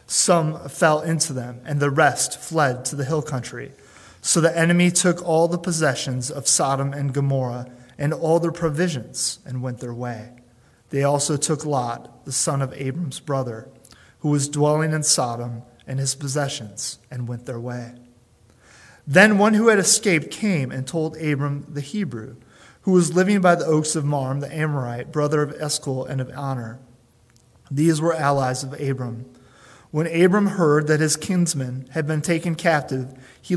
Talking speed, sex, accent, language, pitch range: 170 wpm, male, American, English, 125-155 Hz